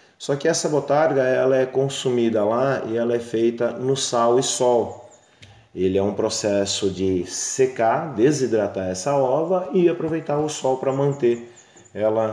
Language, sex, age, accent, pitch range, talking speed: Portuguese, male, 30-49, Brazilian, 105-140 Hz, 155 wpm